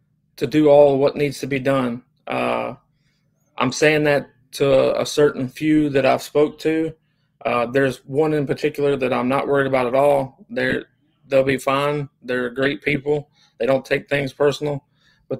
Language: English